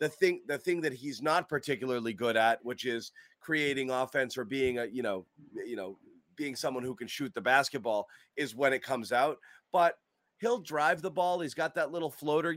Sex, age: male, 30-49